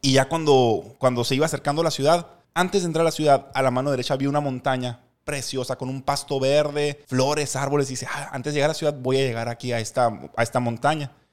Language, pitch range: English, 125-155 Hz